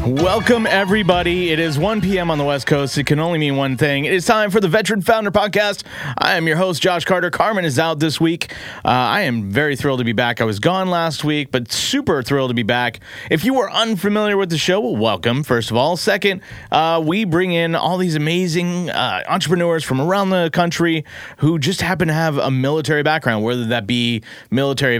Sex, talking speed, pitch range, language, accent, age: male, 220 wpm, 120-175 Hz, English, American, 30-49